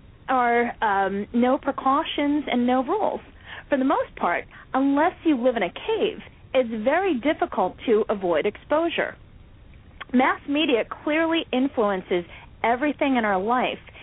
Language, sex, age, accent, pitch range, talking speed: English, female, 40-59, American, 225-315 Hz, 135 wpm